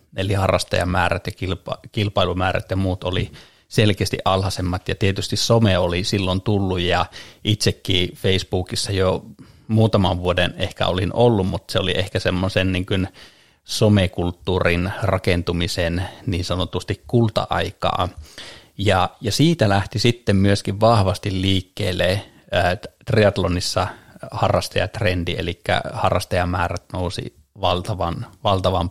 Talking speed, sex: 100 wpm, male